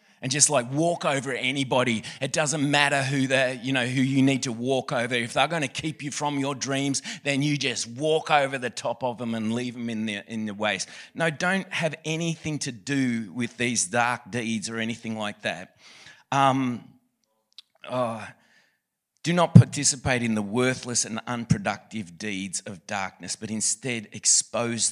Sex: male